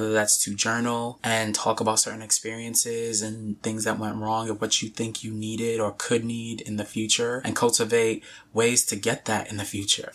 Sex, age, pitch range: male, 20-39, 105-115 Hz